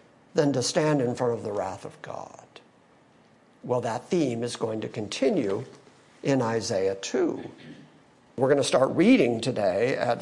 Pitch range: 145-200 Hz